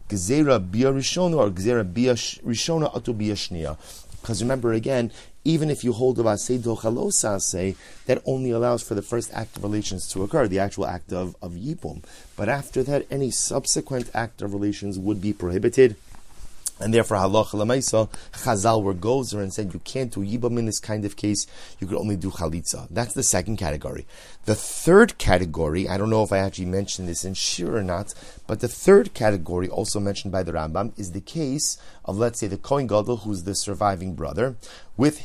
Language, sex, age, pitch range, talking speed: English, male, 30-49, 100-125 Hz, 175 wpm